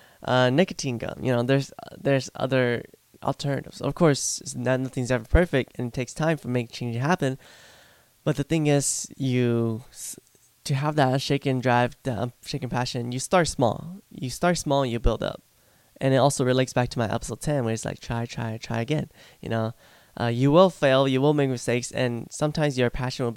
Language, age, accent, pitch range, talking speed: English, 10-29, American, 125-155 Hz, 200 wpm